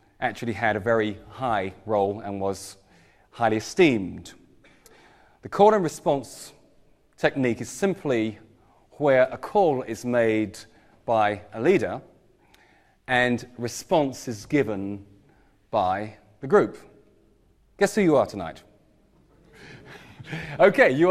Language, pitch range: English, 115-155 Hz